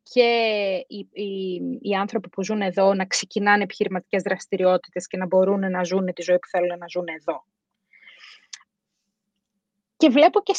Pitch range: 195-255 Hz